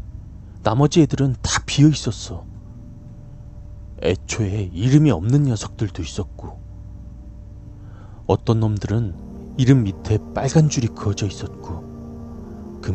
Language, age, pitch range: Korean, 30-49, 80-120 Hz